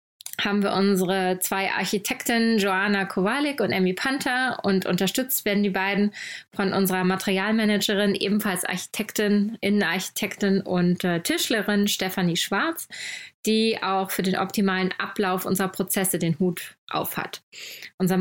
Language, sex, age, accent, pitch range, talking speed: German, female, 20-39, German, 185-225 Hz, 125 wpm